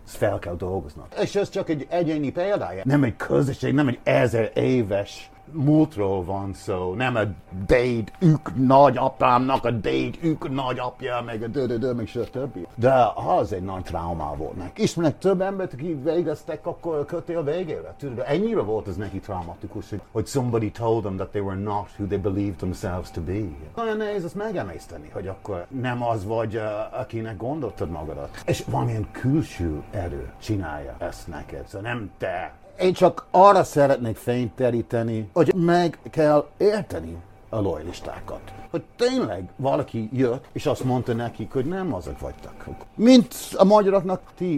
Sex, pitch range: male, 100-155 Hz